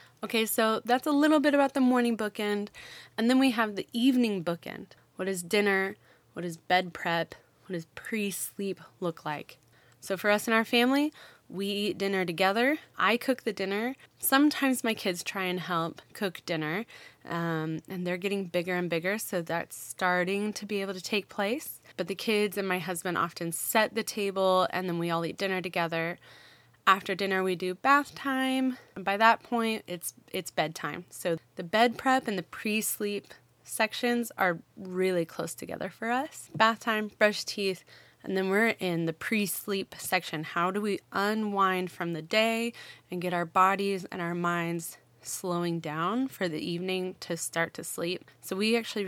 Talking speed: 180 wpm